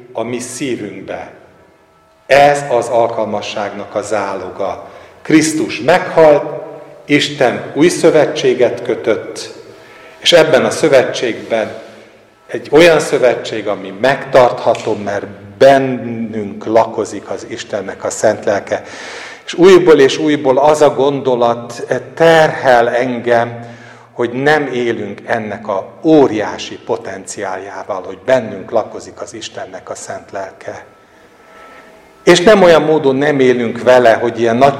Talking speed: 110 wpm